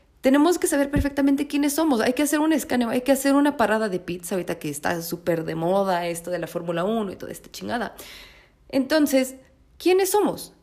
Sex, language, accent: female, Spanish, Mexican